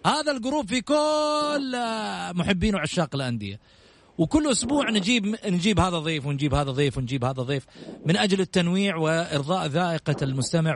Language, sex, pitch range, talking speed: Arabic, male, 140-200 Hz, 140 wpm